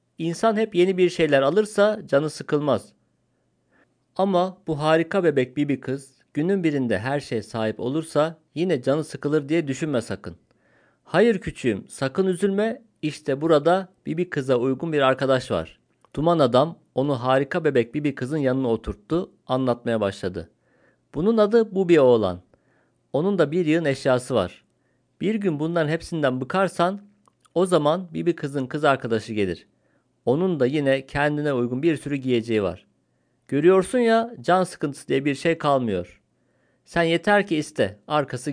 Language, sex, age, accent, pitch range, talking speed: Turkish, male, 50-69, native, 130-175 Hz, 150 wpm